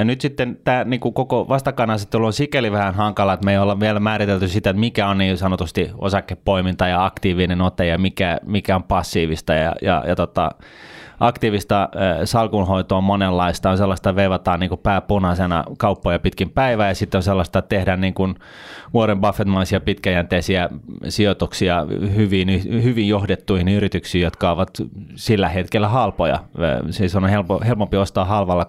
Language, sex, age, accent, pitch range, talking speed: Finnish, male, 20-39, native, 95-105 Hz, 160 wpm